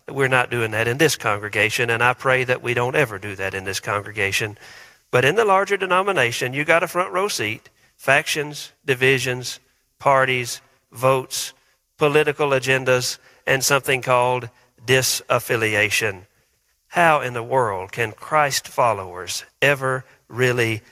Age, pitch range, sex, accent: 50-69, 120-170 Hz, male, American